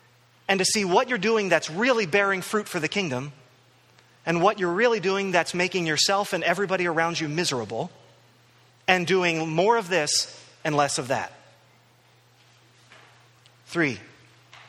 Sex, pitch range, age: male, 135-205 Hz, 30-49